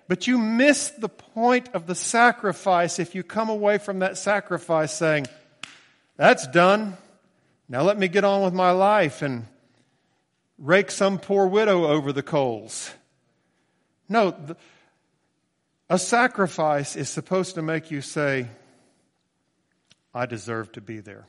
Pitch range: 120-185 Hz